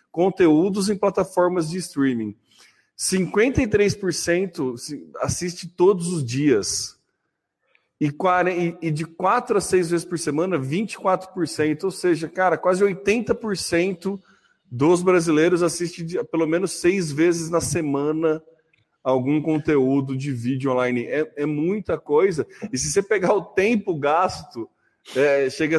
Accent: Brazilian